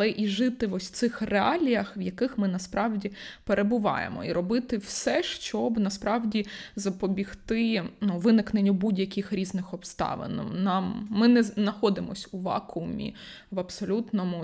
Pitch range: 185-215 Hz